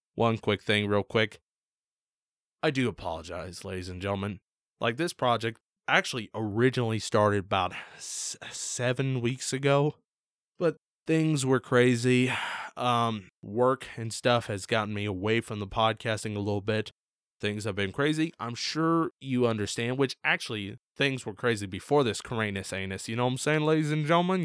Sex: male